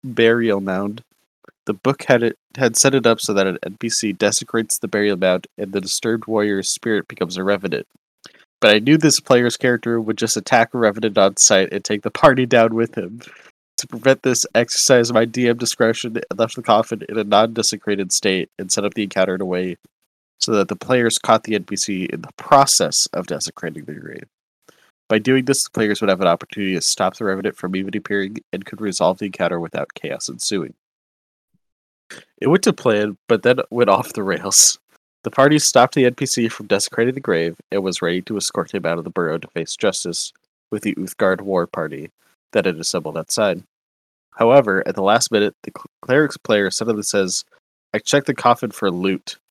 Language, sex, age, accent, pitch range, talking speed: English, male, 20-39, American, 100-120 Hz, 200 wpm